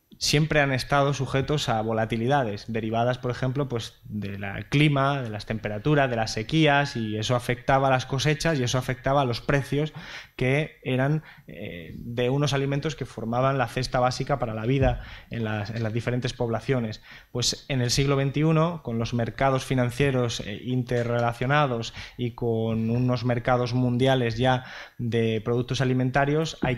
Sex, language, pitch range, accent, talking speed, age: male, Spanish, 115-135 Hz, Spanish, 160 wpm, 20-39